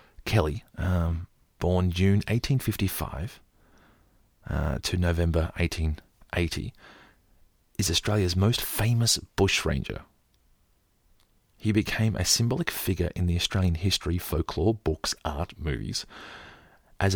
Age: 30-49